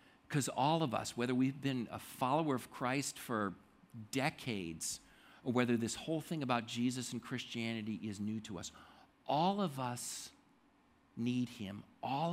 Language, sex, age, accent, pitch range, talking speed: English, male, 50-69, American, 115-150 Hz, 155 wpm